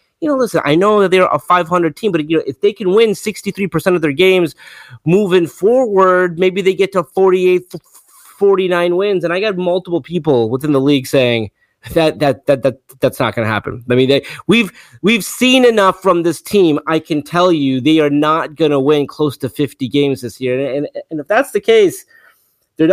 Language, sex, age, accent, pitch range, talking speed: English, male, 30-49, American, 140-185 Hz, 215 wpm